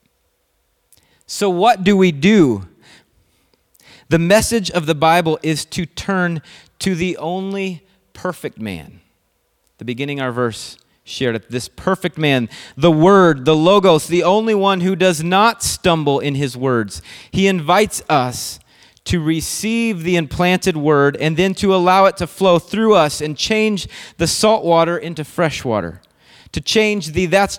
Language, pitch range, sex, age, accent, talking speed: English, 140-190 Hz, male, 30-49, American, 155 wpm